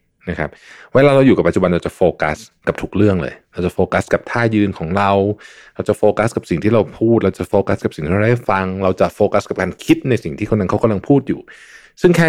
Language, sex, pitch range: Thai, male, 85-115 Hz